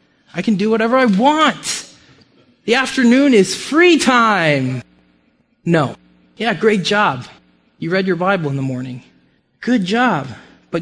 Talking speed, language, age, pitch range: 140 wpm, English, 20-39, 150-210 Hz